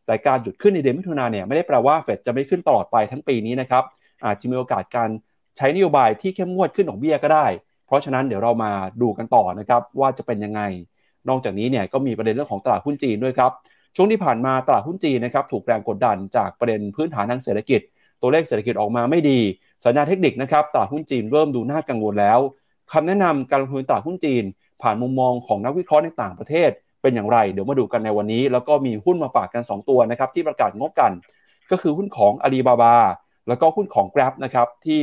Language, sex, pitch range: Thai, male, 110-145 Hz